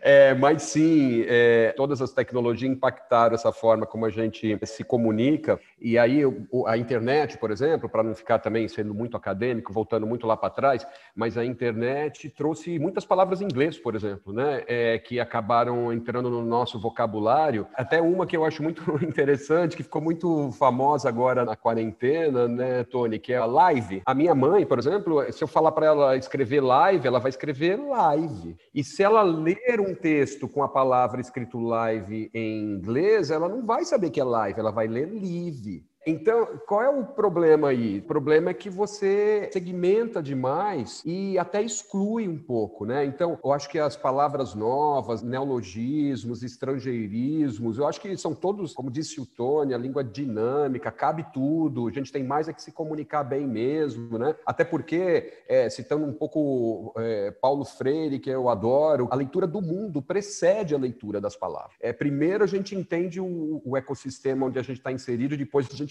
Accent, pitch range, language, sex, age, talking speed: Brazilian, 120-160 Hz, Portuguese, male, 40-59, 180 wpm